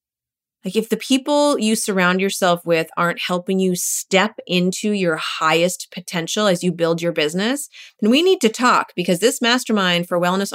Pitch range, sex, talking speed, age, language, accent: 170-225 Hz, female, 175 wpm, 30-49, English, American